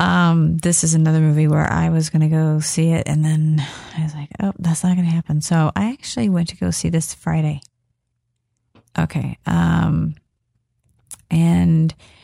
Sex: female